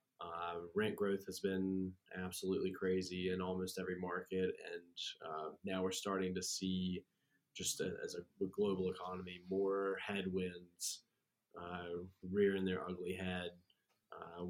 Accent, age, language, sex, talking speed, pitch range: American, 20-39, English, male, 135 wpm, 95-105 Hz